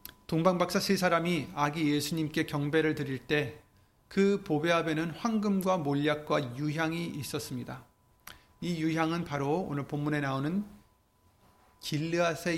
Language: Korean